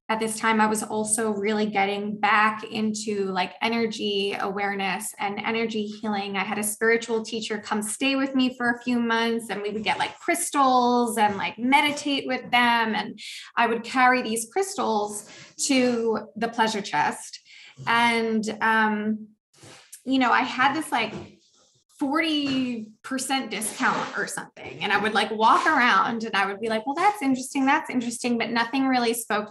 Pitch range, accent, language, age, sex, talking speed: 215-245 Hz, American, English, 20-39, female, 165 wpm